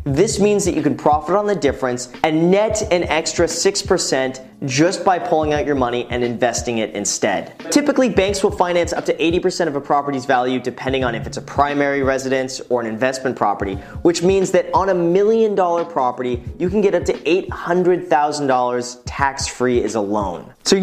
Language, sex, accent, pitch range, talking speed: English, male, American, 130-175 Hz, 185 wpm